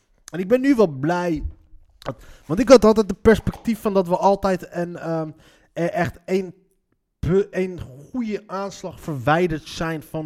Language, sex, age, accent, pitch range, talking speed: Dutch, male, 20-39, Dutch, 120-175 Hz, 145 wpm